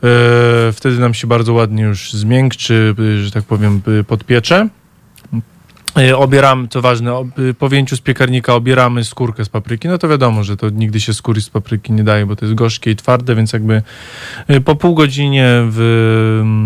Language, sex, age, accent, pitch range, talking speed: Polish, male, 20-39, native, 115-135 Hz, 165 wpm